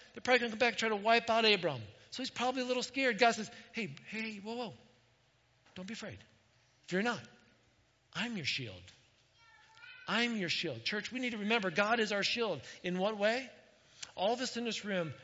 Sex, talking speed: male, 215 wpm